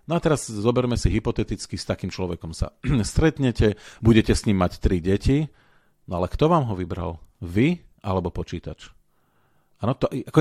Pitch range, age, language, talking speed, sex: 95-125 Hz, 40-59, Slovak, 165 wpm, male